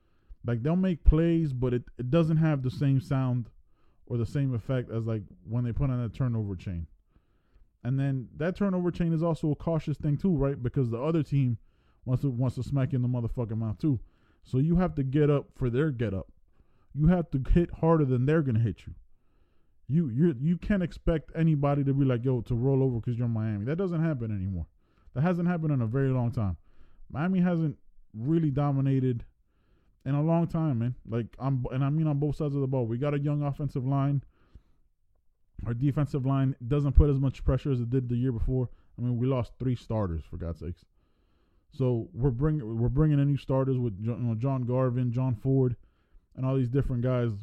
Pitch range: 115-145 Hz